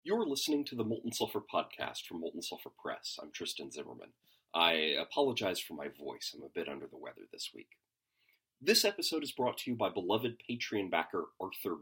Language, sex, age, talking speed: English, male, 30-49, 195 wpm